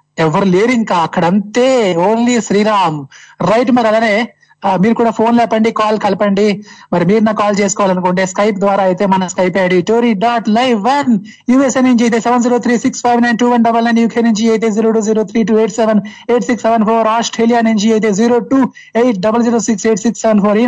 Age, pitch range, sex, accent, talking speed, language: 20-39, 185-235 Hz, male, native, 205 wpm, Telugu